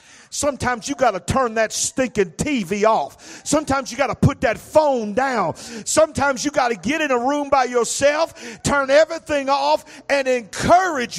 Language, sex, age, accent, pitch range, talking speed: English, male, 50-69, American, 255-335 Hz, 170 wpm